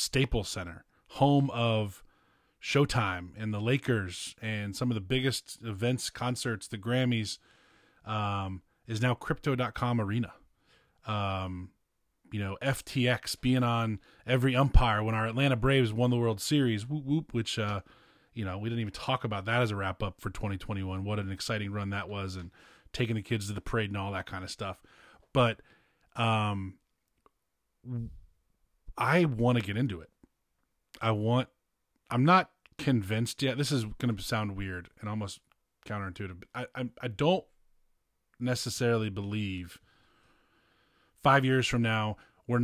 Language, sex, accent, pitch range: English, male, American, 100-125 Hz